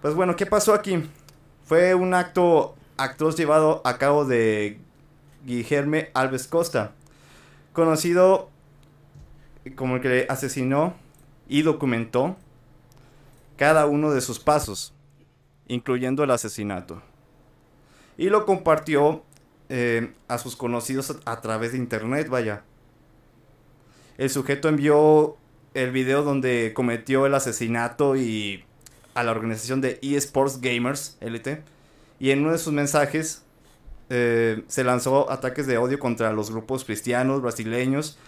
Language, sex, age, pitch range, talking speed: Spanish, male, 30-49, 120-150 Hz, 120 wpm